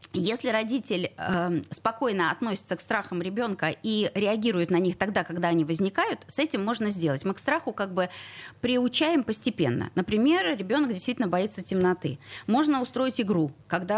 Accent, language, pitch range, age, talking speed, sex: native, Russian, 170-235 Hz, 30-49, 150 wpm, female